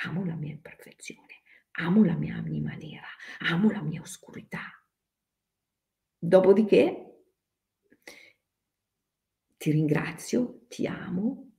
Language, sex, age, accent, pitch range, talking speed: Italian, female, 50-69, native, 170-265 Hz, 95 wpm